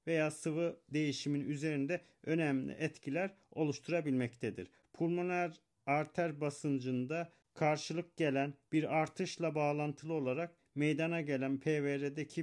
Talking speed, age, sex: 90 wpm, 40-59, male